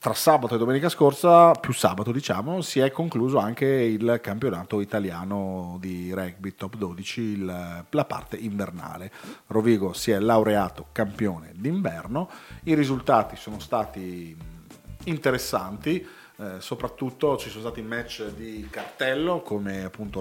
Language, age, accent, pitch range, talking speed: Italian, 40-59, native, 100-125 Hz, 125 wpm